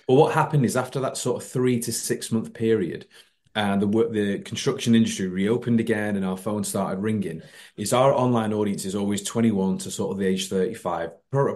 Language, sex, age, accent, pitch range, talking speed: English, male, 30-49, British, 95-115 Hz, 220 wpm